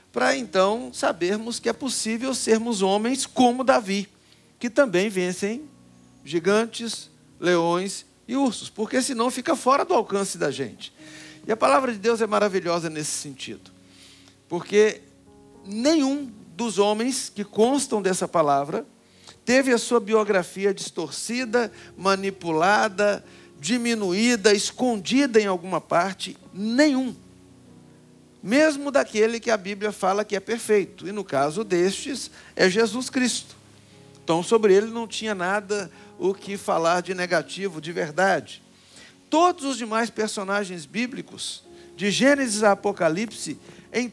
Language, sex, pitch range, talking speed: Portuguese, male, 180-235 Hz, 125 wpm